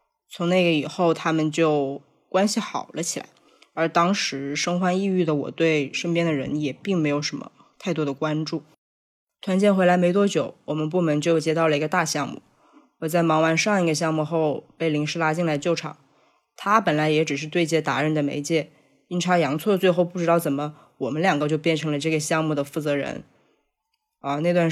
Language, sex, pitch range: Chinese, female, 150-180 Hz